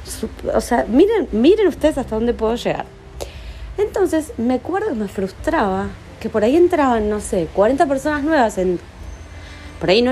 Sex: female